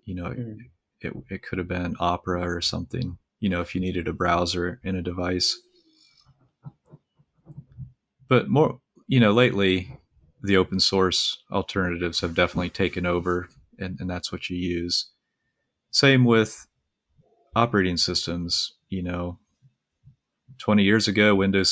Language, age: English, 30-49